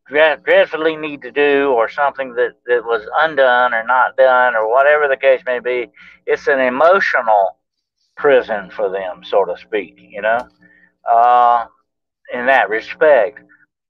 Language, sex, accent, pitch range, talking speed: English, male, American, 125-185 Hz, 145 wpm